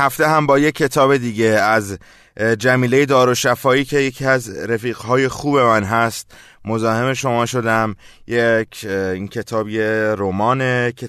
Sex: male